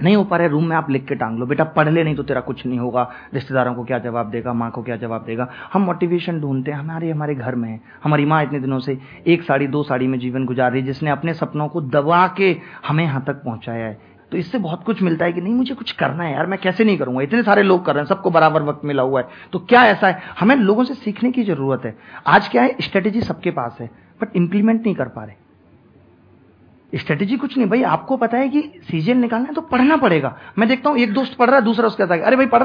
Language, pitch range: Hindi, 135-225 Hz